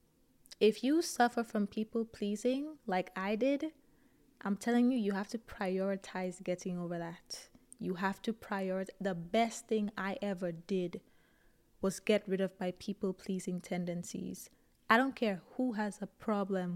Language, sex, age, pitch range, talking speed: English, female, 20-39, 190-235 Hz, 150 wpm